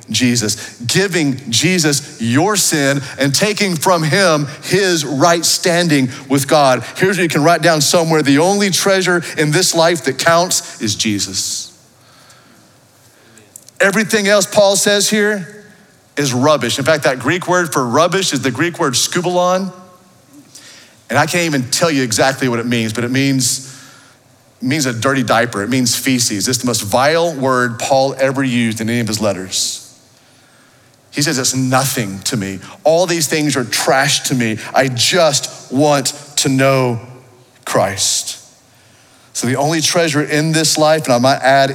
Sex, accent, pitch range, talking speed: male, American, 125-155 Hz, 160 wpm